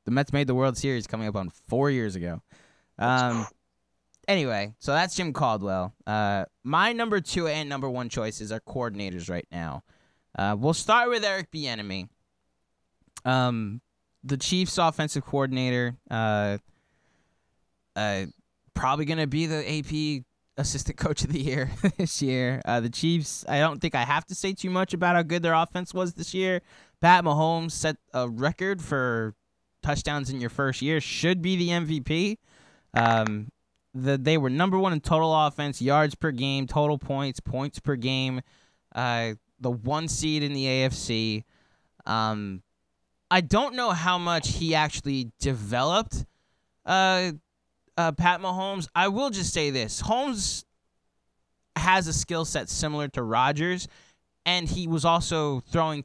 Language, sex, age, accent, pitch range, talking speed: English, male, 20-39, American, 115-165 Hz, 155 wpm